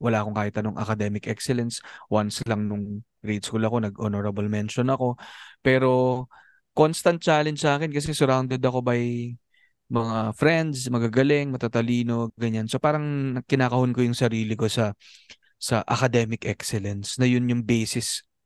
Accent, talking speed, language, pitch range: native, 145 wpm, Filipino, 110-135 Hz